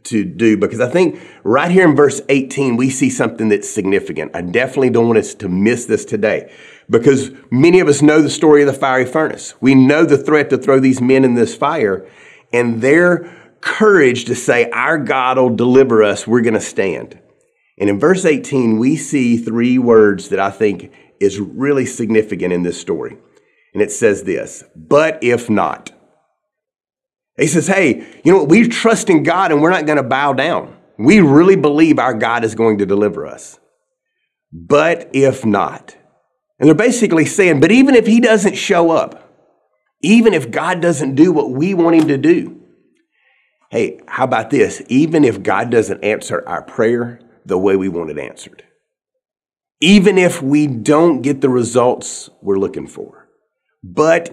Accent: American